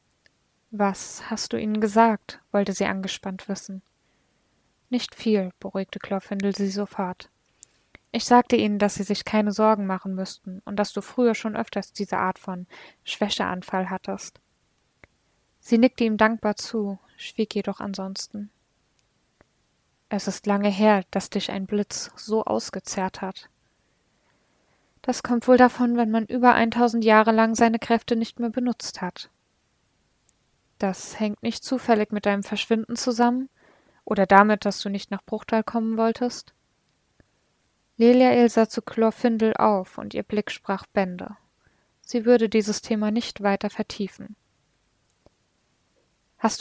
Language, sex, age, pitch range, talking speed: German, female, 20-39, 200-230 Hz, 140 wpm